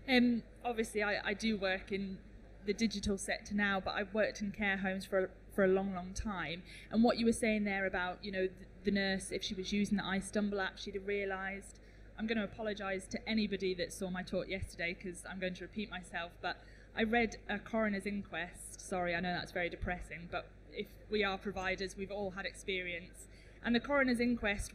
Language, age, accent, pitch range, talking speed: English, 20-39, British, 185-215 Hz, 215 wpm